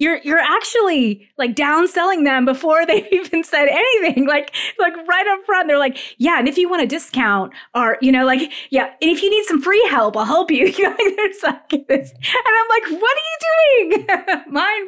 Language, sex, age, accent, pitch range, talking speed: English, female, 30-49, American, 195-315 Hz, 195 wpm